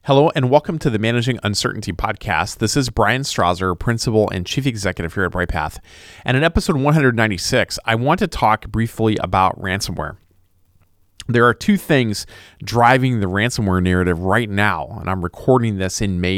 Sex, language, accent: male, English, American